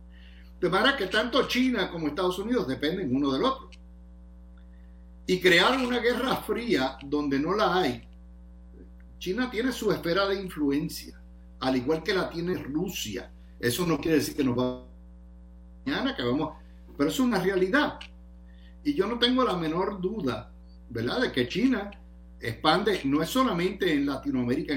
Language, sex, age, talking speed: Spanish, male, 60-79, 155 wpm